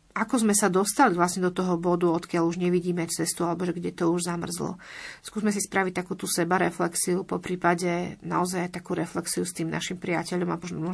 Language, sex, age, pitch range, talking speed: Slovak, female, 40-59, 175-195 Hz, 190 wpm